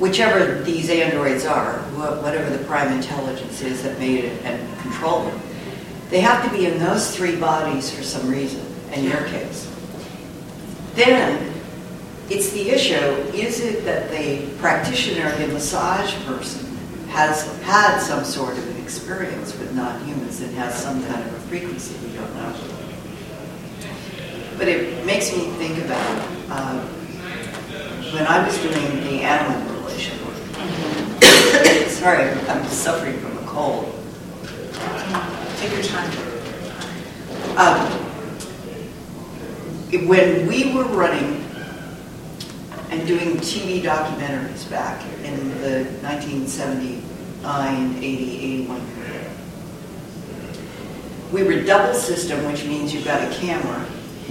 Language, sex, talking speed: English, female, 120 wpm